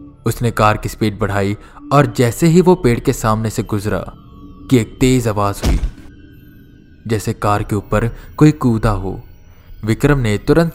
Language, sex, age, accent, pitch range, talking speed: Hindi, male, 20-39, native, 100-130 Hz, 160 wpm